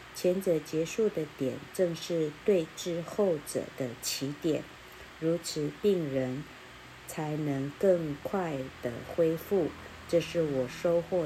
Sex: female